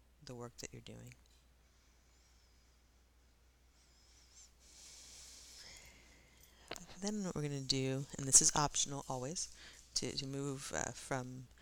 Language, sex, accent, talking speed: English, female, American, 110 wpm